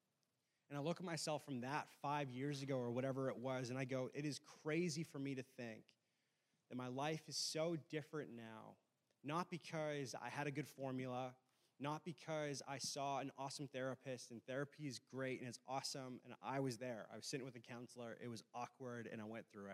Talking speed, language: 210 wpm, English